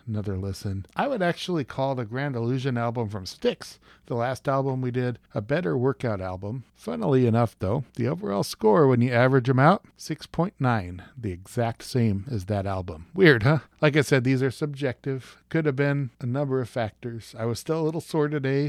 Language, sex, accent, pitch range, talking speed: English, male, American, 115-150 Hz, 195 wpm